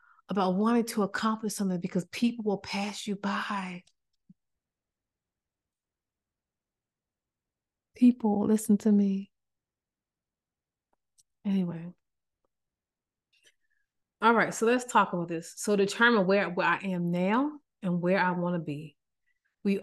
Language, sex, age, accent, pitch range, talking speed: English, female, 30-49, American, 165-210 Hz, 110 wpm